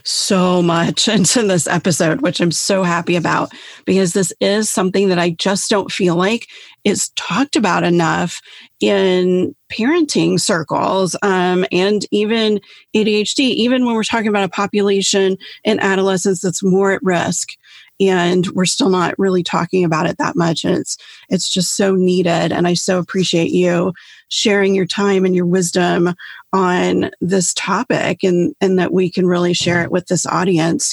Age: 30-49